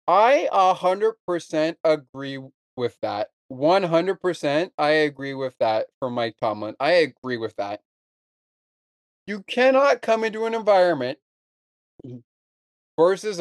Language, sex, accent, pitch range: English, male, American, 130-185 Hz